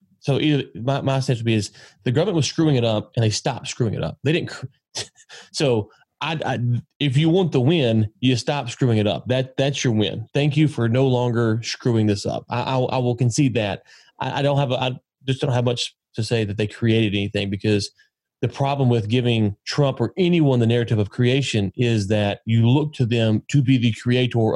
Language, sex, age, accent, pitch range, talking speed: English, male, 30-49, American, 105-130 Hz, 220 wpm